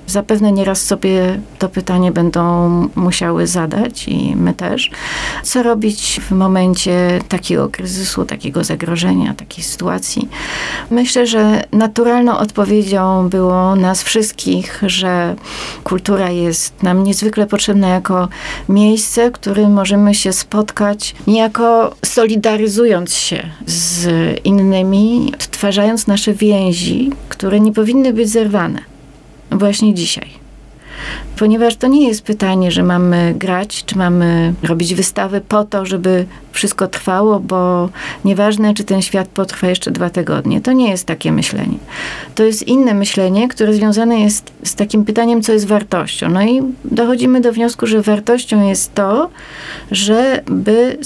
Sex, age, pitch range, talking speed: female, 30-49, 185-220 Hz, 130 wpm